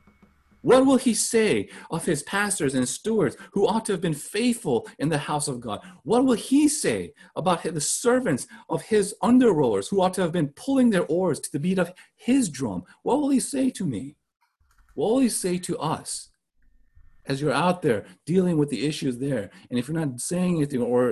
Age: 40-59